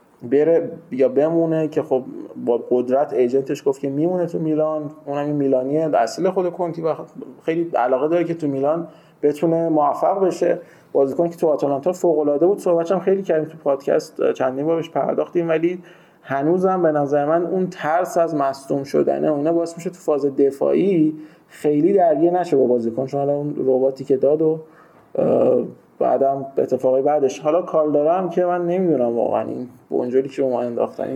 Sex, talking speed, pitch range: male, 170 wpm, 140-170 Hz